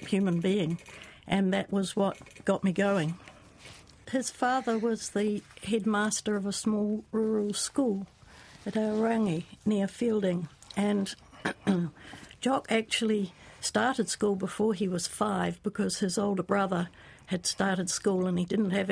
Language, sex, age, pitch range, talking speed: English, female, 60-79, 185-215 Hz, 135 wpm